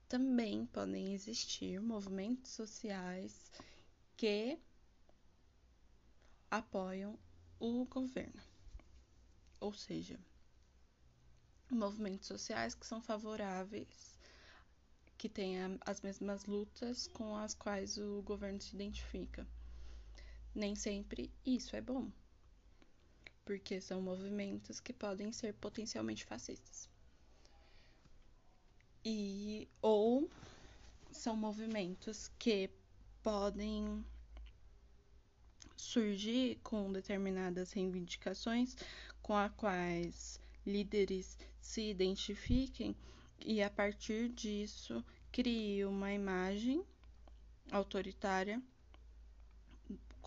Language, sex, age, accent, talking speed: Portuguese, female, 10-29, Brazilian, 80 wpm